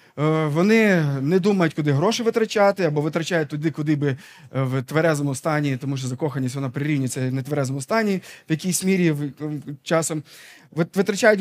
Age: 20-39